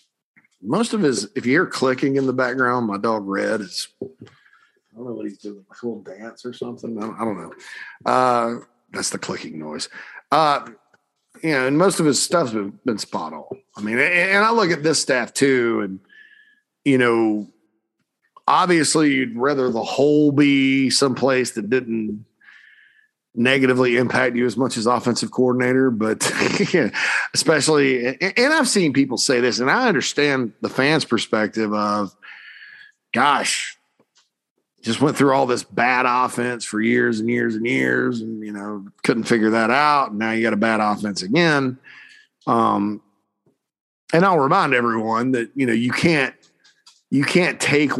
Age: 40-59